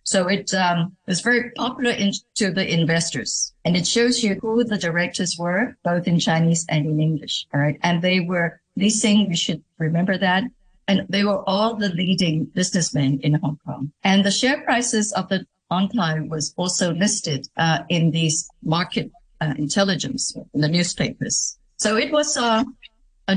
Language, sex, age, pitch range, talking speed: English, female, 60-79, 160-215 Hz, 175 wpm